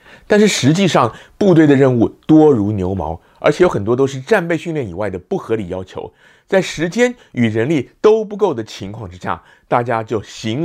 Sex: male